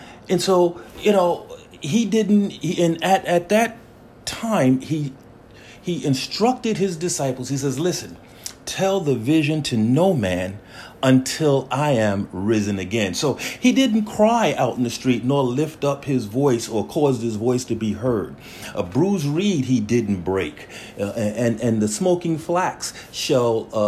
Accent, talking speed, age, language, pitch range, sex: American, 160 wpm, 40-59, English, 110-155 Hz, male